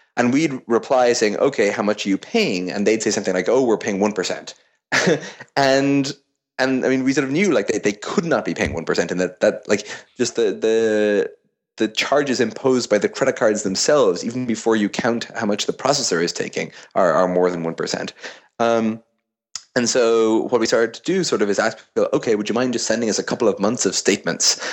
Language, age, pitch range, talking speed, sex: English, 30-49, 95-130 Hz, 225 wpm, male